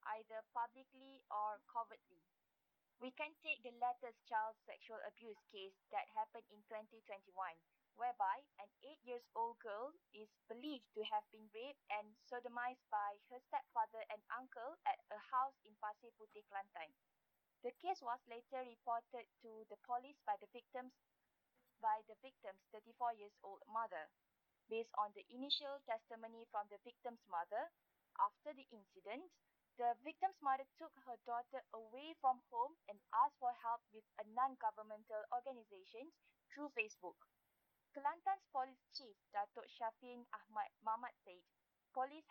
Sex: female